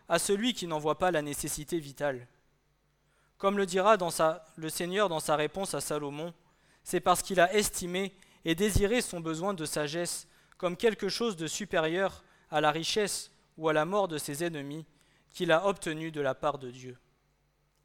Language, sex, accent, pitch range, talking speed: French, male, French, 150-180 Hz, 185 wpm